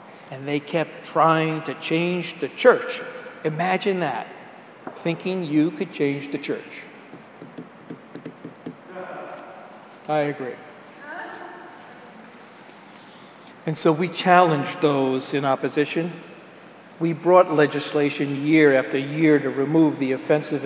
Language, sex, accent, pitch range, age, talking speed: English, male, American, 145-185 Hz, 50-69, 100 wpm